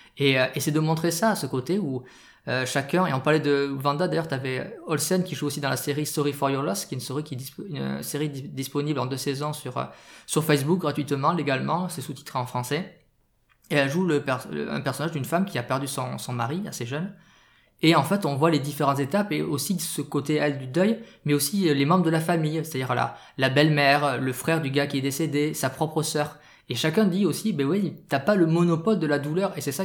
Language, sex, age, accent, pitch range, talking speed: French, male, 20-39, French, 135-165 Hz, 250 wpm